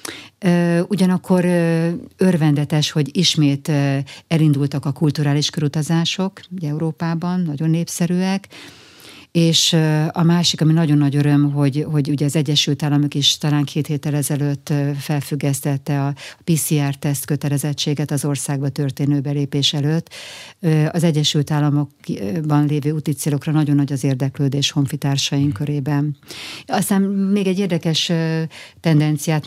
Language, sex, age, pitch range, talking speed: Hungarian, female, 60-79, 140-160 Hz, 110 wpm